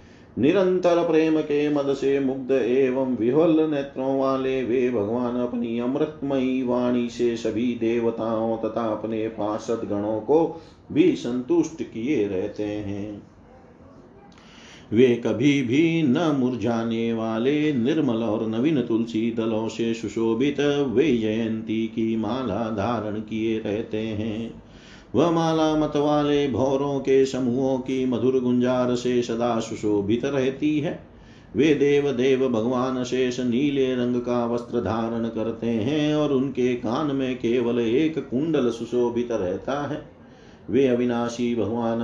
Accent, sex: native, male